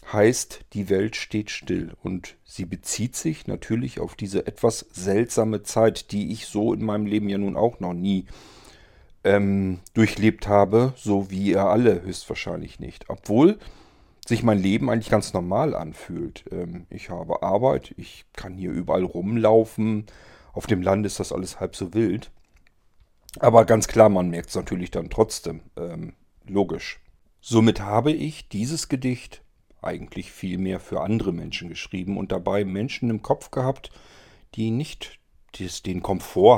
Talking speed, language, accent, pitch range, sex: 155 wpm, German, German, 95-110 Hz, male